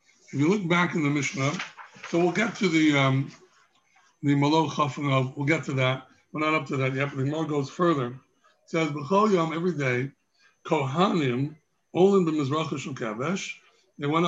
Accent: American